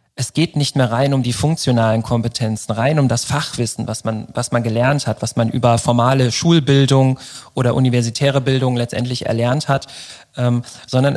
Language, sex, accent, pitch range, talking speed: German, male, German, 120-135 Hz, 170 wpm